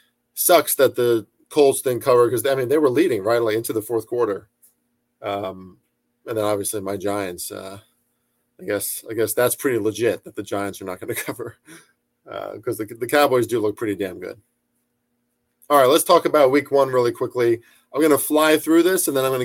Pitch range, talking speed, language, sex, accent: 110-135 Hz, 215 wpm, English, male, American